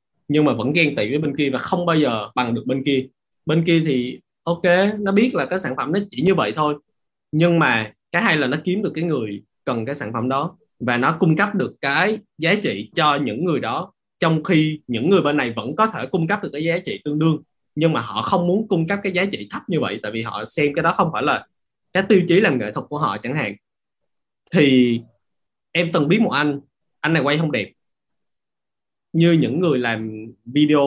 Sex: male